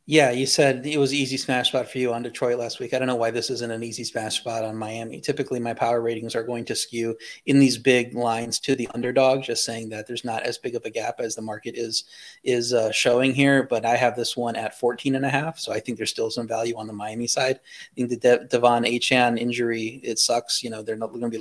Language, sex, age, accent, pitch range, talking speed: English, male, 30-49, American, 115-130 Hz, 265 wpm